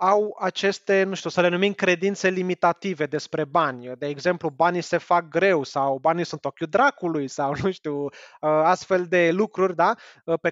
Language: Romanian